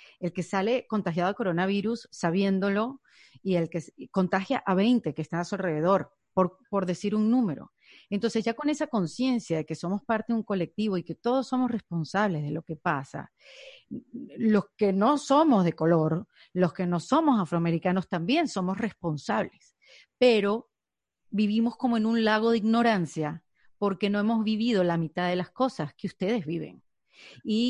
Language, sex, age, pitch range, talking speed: Spanish, female, 40-59, 175-225 Hz, 170 wpm